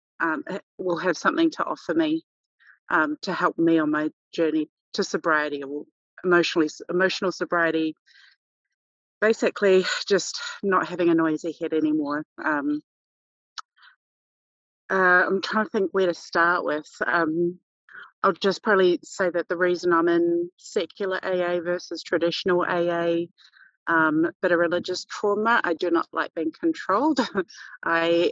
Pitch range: 165-220 Hz